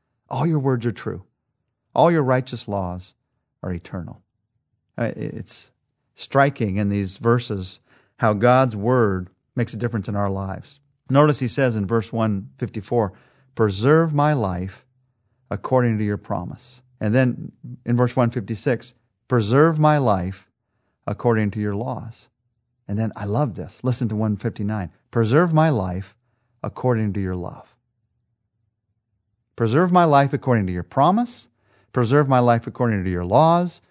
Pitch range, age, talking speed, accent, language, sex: 105-145 Hz, 40-59, 140 wpm, American, English, male